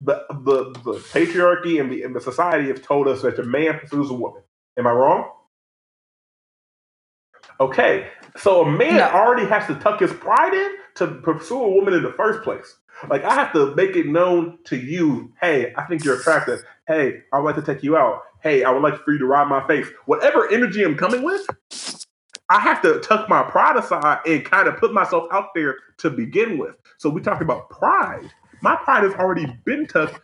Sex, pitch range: male, 150-235 Hz